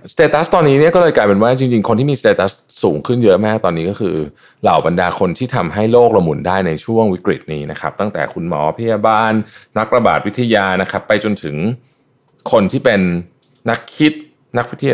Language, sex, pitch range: Thai, male, 85-120 Hz